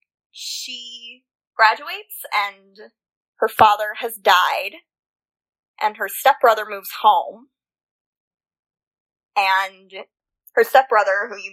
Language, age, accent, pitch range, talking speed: English, 20-39, American, 200-290 Hz, 90 wpm